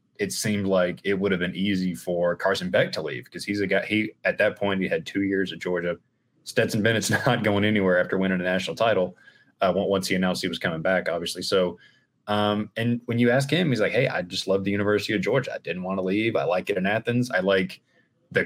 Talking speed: 245 wpm